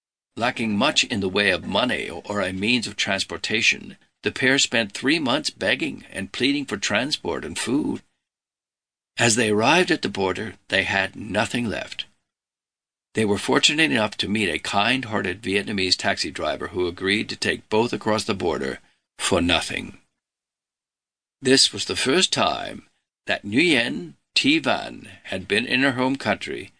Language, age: English, 60-79